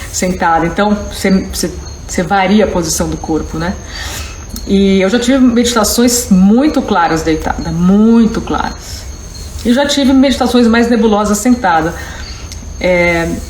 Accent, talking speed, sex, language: Brazilian, 120 wpm, female, Portuguese